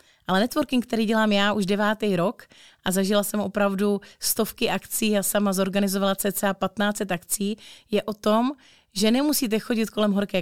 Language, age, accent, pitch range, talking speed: Czech, 30-49, native, 195-235 Hz, 160 wpm